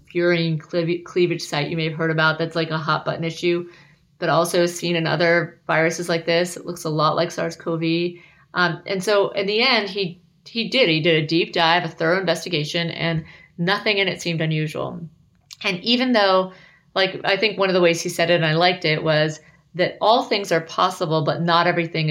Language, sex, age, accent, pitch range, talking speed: English, female, 30-49, American, 165-195 Hz, 205 wpm